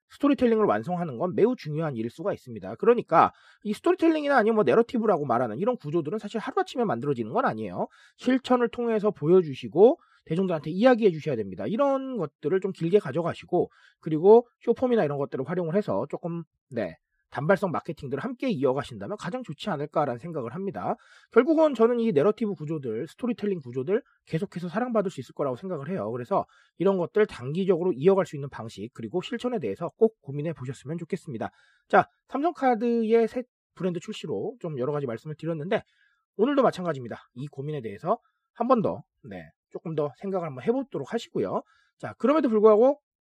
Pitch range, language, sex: 150-235 Hz, Korean, male